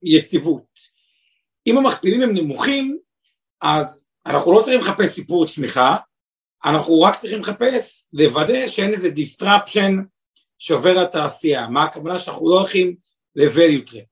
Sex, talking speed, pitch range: male, 120 wpm, 160-230 Hz